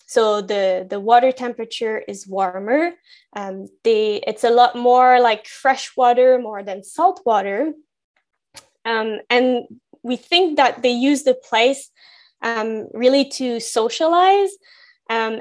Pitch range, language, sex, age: 215-270 Hz, English, female, 20-39